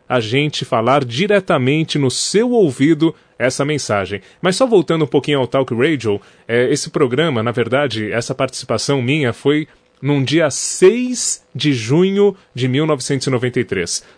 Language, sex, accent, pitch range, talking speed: Portuguese, male, Brazilian, 125-155 Hz, 135 wpm